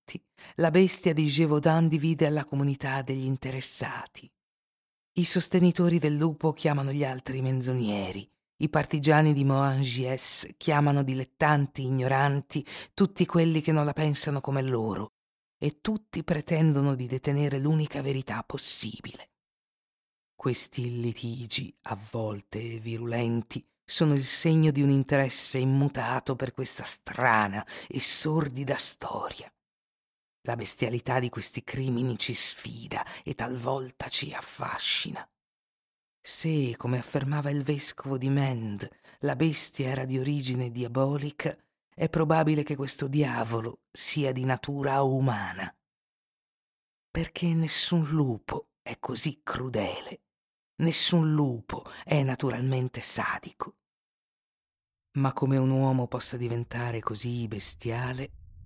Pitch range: 125-150 Hz